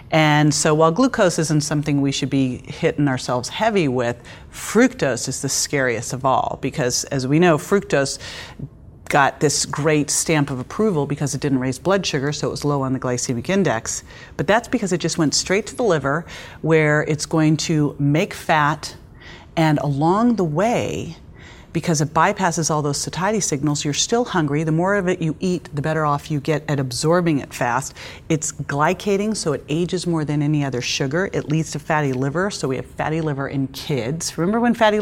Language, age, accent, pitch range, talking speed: English, 40-59, American, 145-185 Hz, 195 wpm